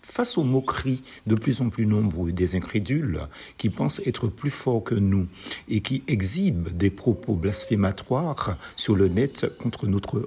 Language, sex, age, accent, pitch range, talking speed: French, male, 50-69, French, 100-140 Hz, 165 wpm